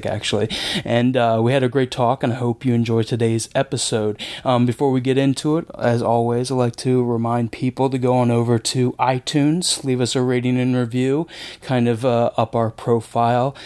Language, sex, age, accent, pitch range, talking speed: English, male, 20-39, American, 115-135 Hz, 200 wpm